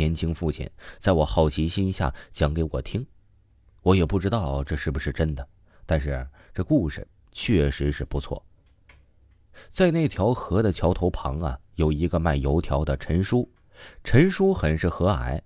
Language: Chinese